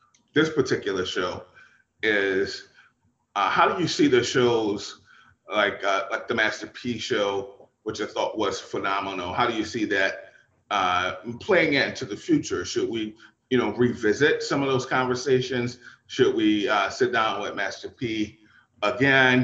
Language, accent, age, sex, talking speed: English, American, 30-49, male, 155 wpm